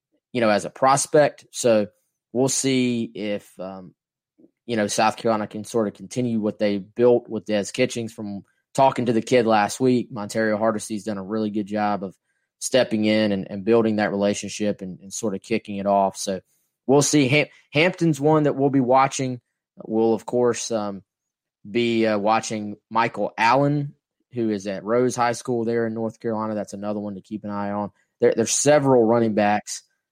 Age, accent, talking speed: 20-39, American, 190 wpm